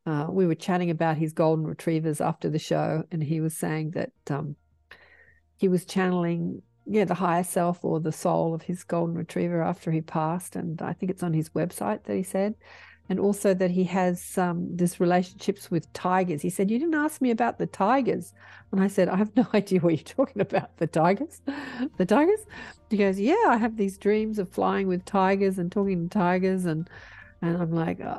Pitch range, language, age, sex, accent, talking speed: 160-195 Hz, English, 50-69, female, Australian, 210 wpm